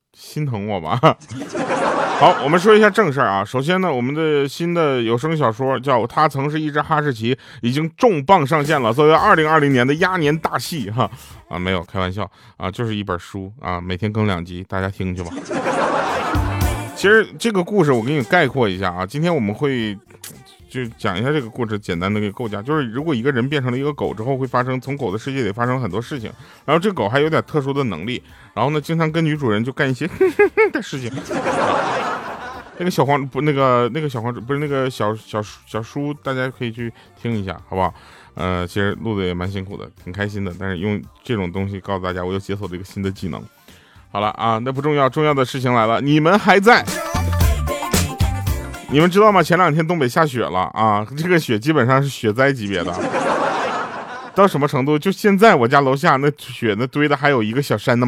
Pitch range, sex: 100-150 Hz, male